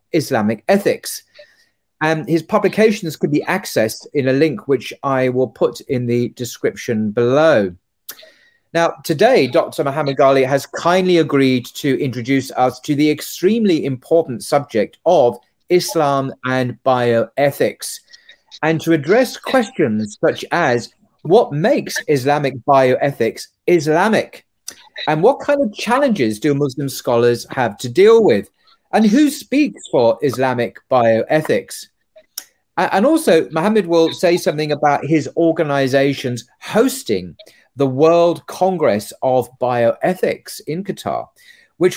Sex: male